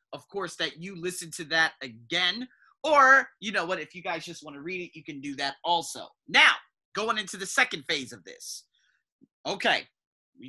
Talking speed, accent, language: 200 wpm, American, English